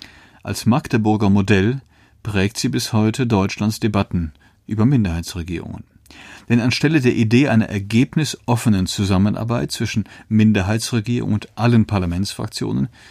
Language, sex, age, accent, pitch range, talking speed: German, male, 40-59, German, 100-120 Hz, 105 wpm